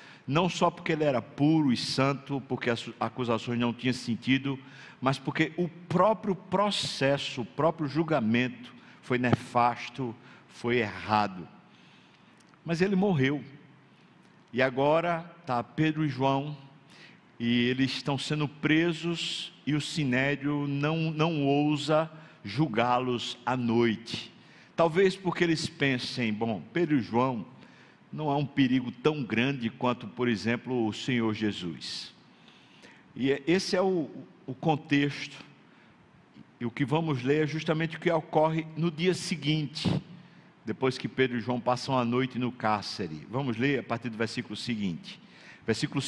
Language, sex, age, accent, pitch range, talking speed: Portuguese, male, 60-79, Brazilian, 125-160 Hz, 140 wpm